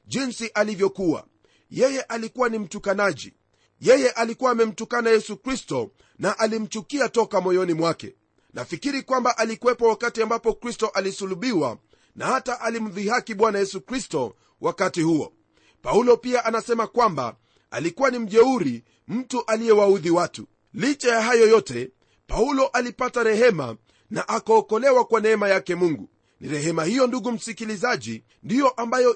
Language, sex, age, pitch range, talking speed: Swahili, male, 40-59, 190-240 Hz, 125 wpm